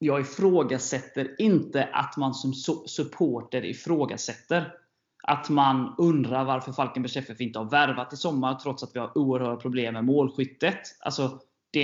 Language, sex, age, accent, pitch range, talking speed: Swedish, male, 20-39, native, 130-155 Hz, 145 wpm